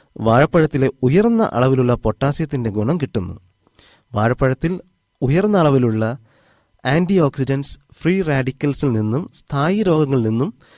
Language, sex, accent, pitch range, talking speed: Malayalam, male, native, 115-155 Hz, 90 wpm